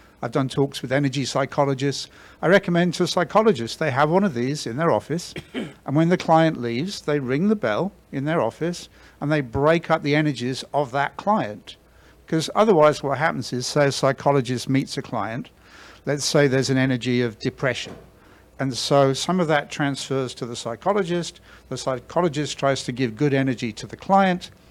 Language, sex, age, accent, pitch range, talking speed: English, male, 60-79, British, 130-165 Hz, 185 wpm